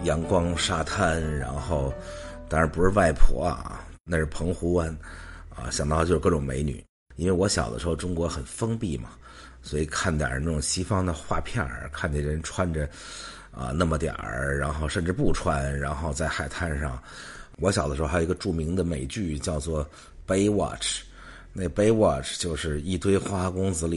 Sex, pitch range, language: male, 75-90 Hz, English